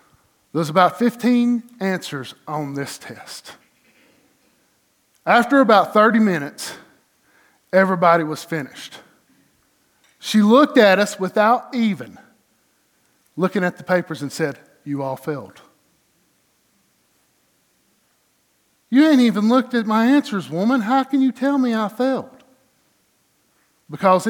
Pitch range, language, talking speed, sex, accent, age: 170-230 Hz, English, 110 wpm, male, American, 50-69